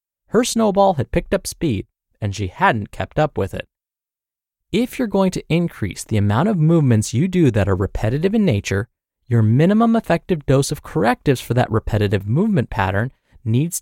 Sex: male